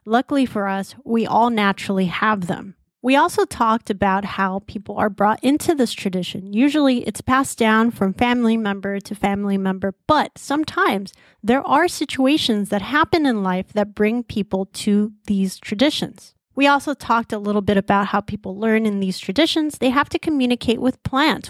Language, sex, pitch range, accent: English, female, 205-255 Hz, American